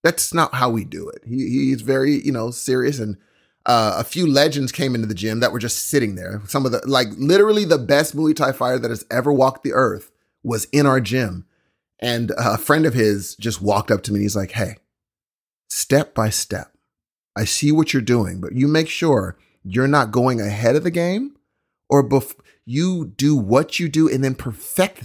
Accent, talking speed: American, 215 wpm